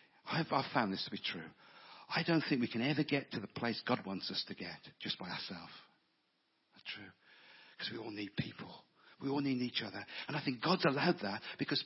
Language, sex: English, male